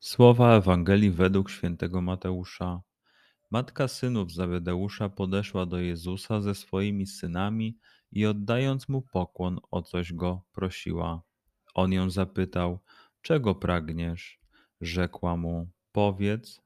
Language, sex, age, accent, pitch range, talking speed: Polish, male, 30-49, native, 90-105 Hz, 110 wpm